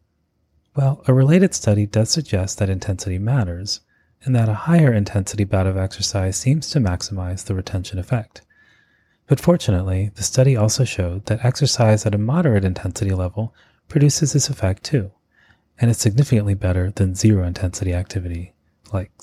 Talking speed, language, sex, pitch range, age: 145 wpm, English, male, 95-120 Hz, 30-49